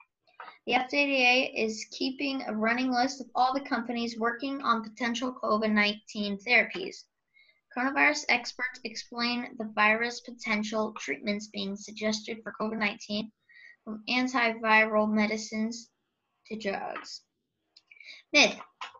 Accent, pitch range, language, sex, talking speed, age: American, 215-255 Hz, English, female, 105 wpm, 10-29